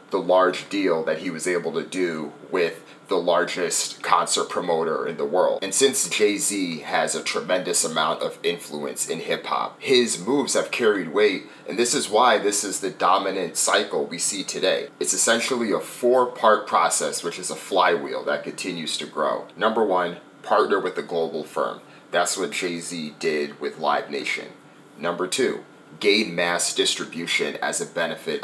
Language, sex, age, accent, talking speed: English, male, 30-49, American, 170 wpm